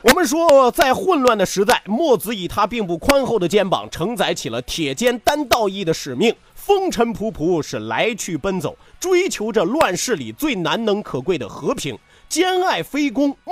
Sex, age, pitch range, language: male, 30-49, 175-265 Hz, Chinese